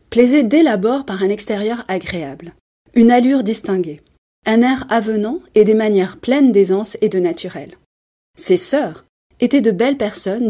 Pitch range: 185-265 Hz